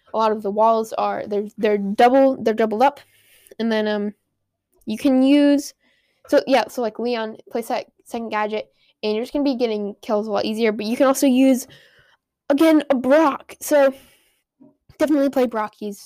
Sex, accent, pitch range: female, American, 210-265 Hz